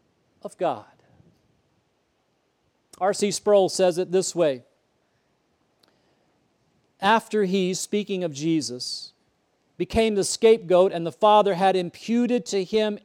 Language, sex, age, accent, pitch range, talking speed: English, male, 40-59, American, 140-205 Hz, 105 wpm